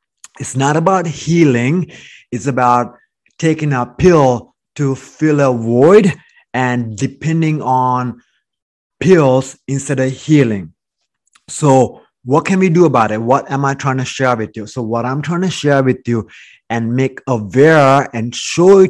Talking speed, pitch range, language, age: 150 wpm, 120-150 Hz, English, 30-49